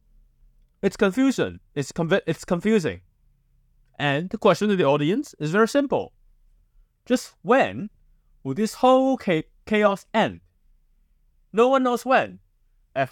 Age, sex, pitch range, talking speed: 20-39, male, 125-195 Hz, 130 wpm